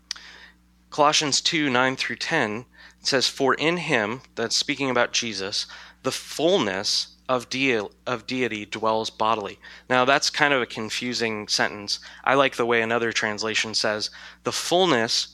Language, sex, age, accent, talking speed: English, male, 30-49, American, 150 wpm